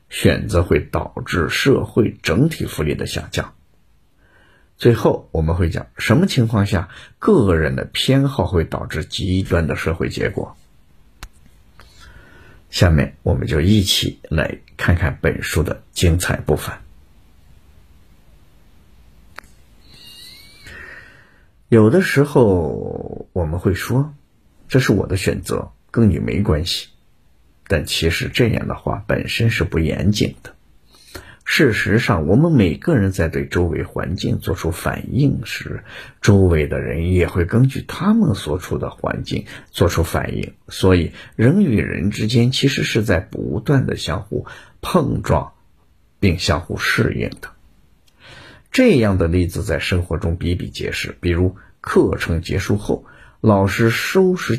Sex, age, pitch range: male, 50-69, 80-110 Hz